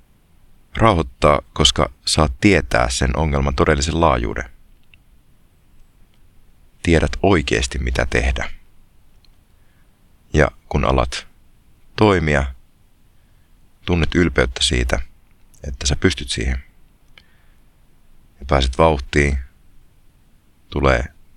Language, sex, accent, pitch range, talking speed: Finnish, male, native, 70-90 Hz, 75 wpm